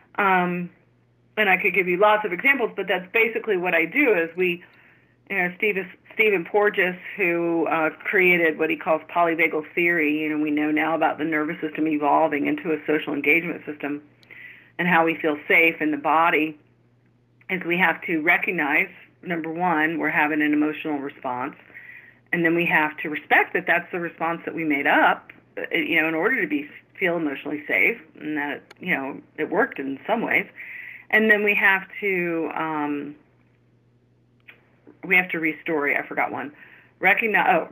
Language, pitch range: English, 150-200 Hz